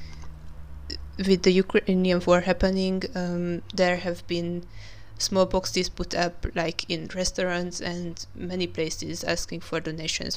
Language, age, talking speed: English, 20-39, 125 wpm